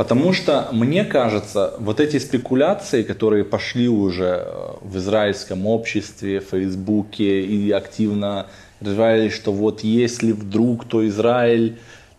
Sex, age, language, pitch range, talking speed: male, 20-39, Russian, 100-120 Hz, 120 wpm